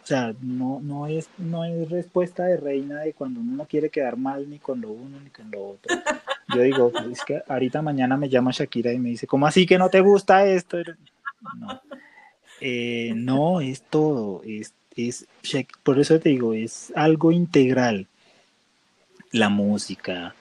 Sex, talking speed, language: male, 160 wpm, Spanish